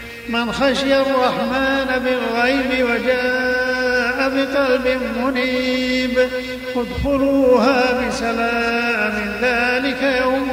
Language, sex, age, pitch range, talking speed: Arabic, male, 50-69, 235-255 Hz, 70 wpm